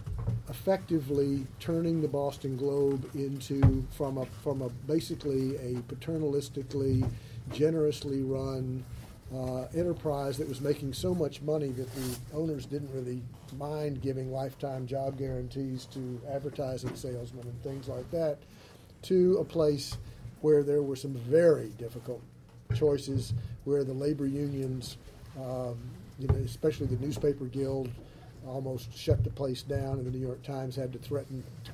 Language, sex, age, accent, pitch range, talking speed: English, male, 40-59, American, 125-145 Hz, 140 wpm